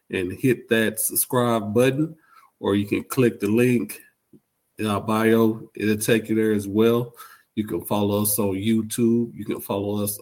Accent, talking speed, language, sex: American, 175 wpm, English, male